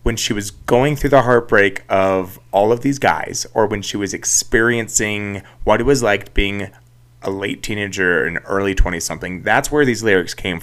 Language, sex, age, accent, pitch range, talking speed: English, male, 30-49, American, 105-140 Hz, 200 wpm